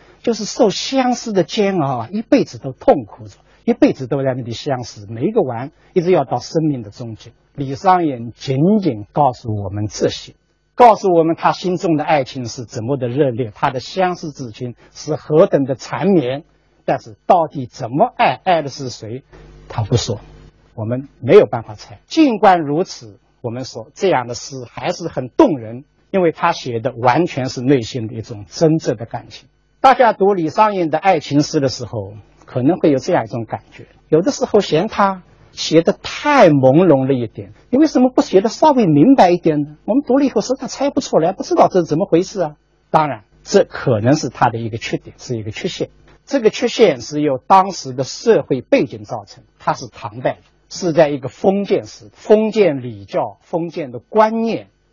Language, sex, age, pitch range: Chinese, male, 50-69, 125-190 Hz